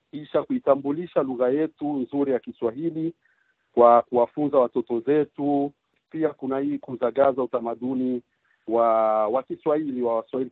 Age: 50-69